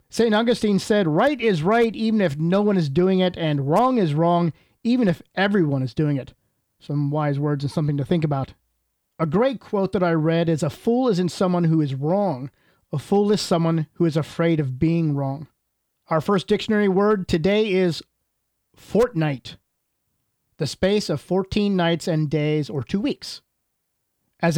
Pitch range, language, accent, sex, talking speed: 150-195 Hz, English, American, male, 180 wpm